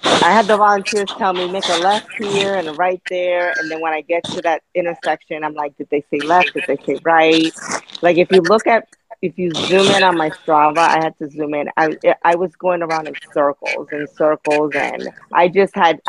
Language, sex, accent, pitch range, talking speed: English, female, American, 155-180 Hz, 230 wpm